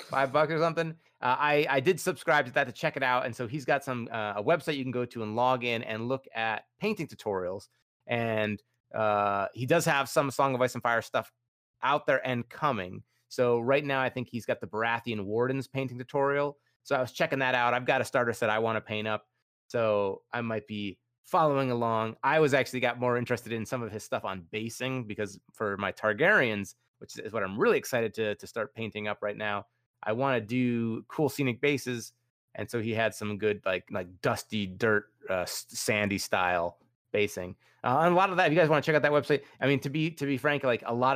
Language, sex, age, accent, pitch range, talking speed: English, male, 30-49, American, 110-135 Hz, 235 wpm